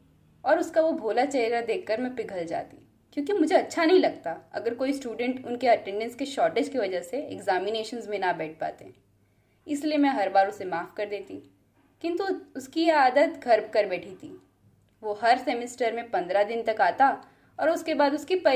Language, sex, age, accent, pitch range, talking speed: Hindi, female, 20-39, native, 210-315 Hz, 185 wpm